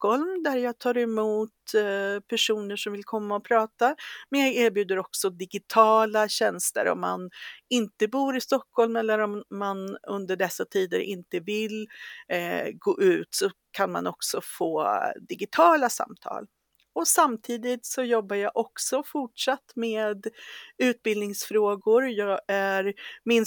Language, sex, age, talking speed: English, female, 50-69, 125 wpm